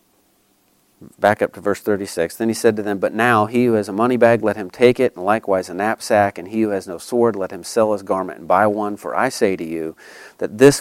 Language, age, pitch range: English, 40-59, 100-120 Hz